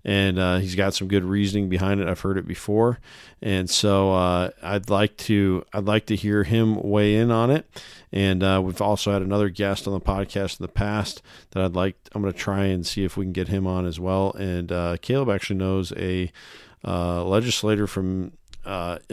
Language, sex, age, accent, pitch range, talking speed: English, male, 40-59, American, 95-115 Hz, 215 wpm